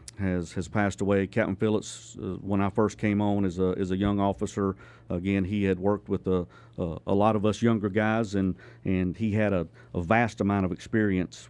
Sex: male